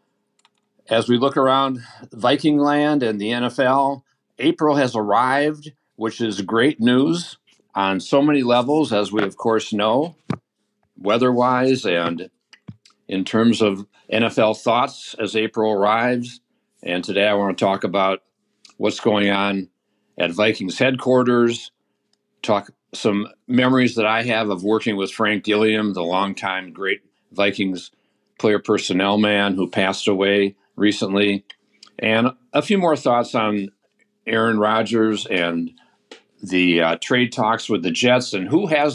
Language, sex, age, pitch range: English, male, 50-69, 100-125 Hz